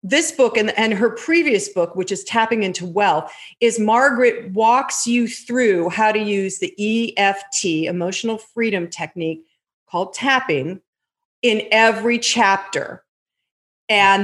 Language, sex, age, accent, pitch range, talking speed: English, female, 40-59, American, 180-235 Hz, 130 wpm